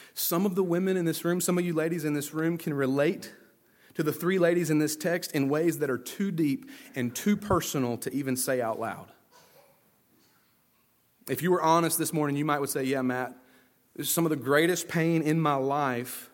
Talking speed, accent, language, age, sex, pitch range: 215 wpm, American, English, 30-49, male, 130-170 Hz